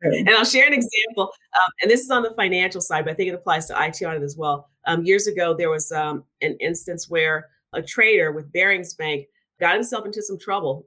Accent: American